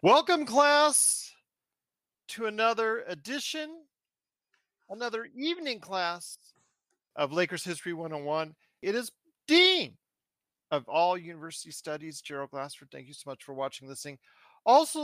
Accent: American